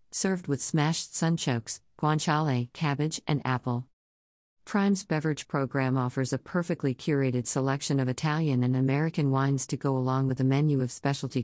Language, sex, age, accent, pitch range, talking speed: English, female, 50-69, American, 130-160 Hz, 150 wpm